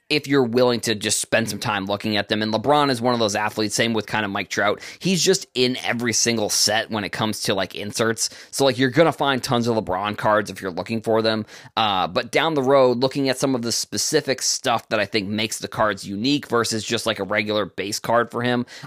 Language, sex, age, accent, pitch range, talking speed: English, male, 20-39, American, 105-130 Hz, 250 wpm